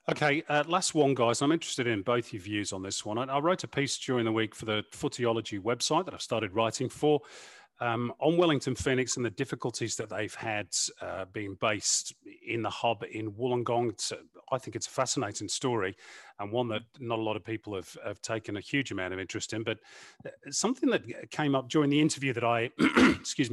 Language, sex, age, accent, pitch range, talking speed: English, male, 40-59, British, 110-135 Hz, 215 wpm